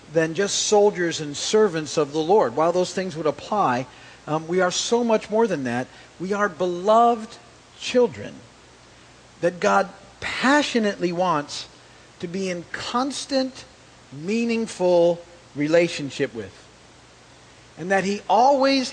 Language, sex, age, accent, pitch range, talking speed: English, male, 50-69, American, 125-175 Hz, 125 wpm